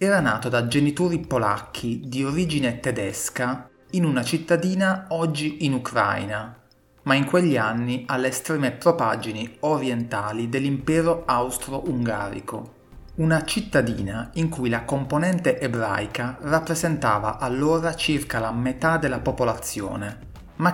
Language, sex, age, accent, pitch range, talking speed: Italian, male, 30-49, native, 115-155 Hz, 115 wpm